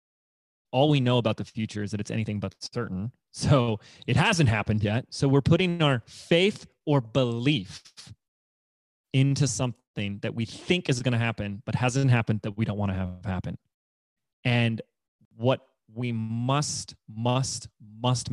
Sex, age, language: male, 30-49, English